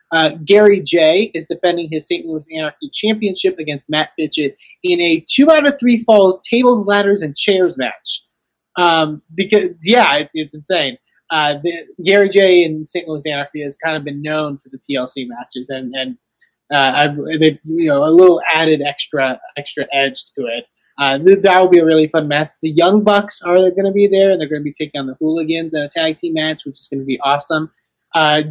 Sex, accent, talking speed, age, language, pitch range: male, American, 215 wpm, 20-39, English, 145-180 Hz